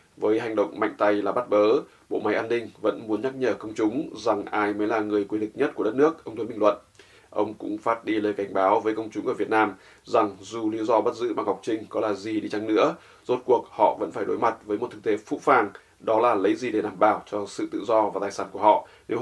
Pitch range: 110-135 Hz